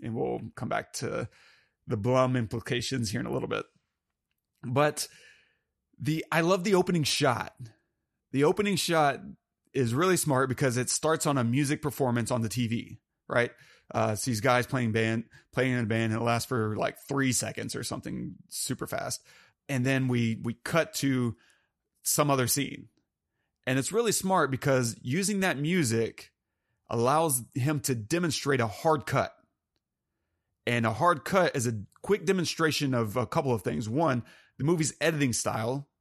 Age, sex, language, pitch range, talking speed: 30-49, male, English, 120-150 Hz, 165 wpm